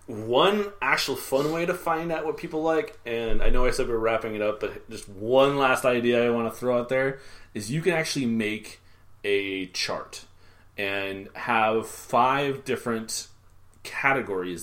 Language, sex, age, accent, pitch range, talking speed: English, male, 30-49, American, 95-120 Hz, 175 wpm